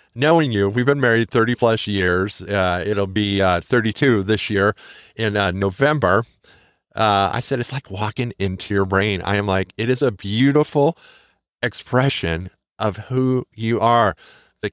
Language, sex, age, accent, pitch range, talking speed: English, male, 40-59, American, 105-140 Hz, 160 wpm